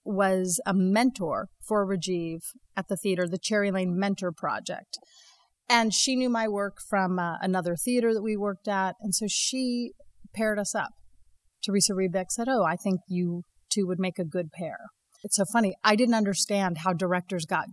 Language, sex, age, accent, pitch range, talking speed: English, female, 30-49, American, 185-230 Hz, 185 wpm